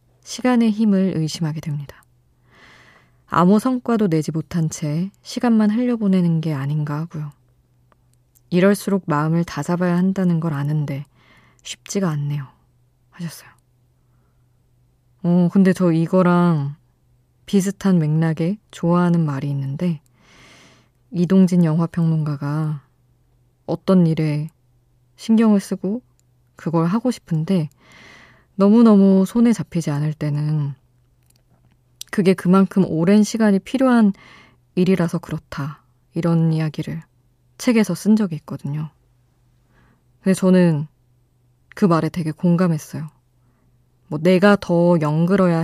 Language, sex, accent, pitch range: Korean, female, native, 125-185 Hz